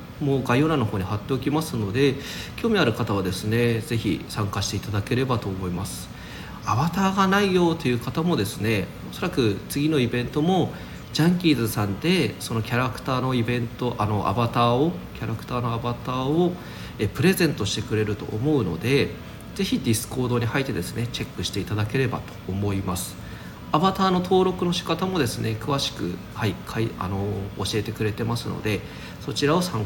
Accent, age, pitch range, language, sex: native, 40-59, 100-140 Hz, Japanese, male